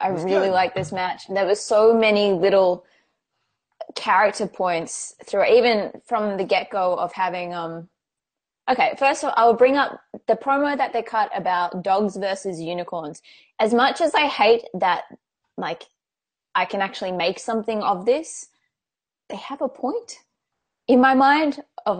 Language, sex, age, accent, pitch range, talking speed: English, female, 20-39, Australian, 180-235 Hz, 160 wpm